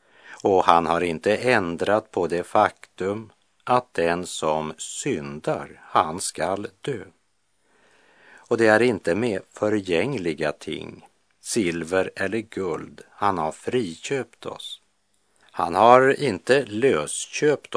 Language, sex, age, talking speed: Czech, male, 50-69, 110 wpm